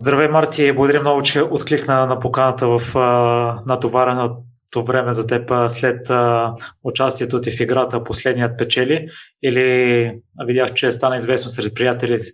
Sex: male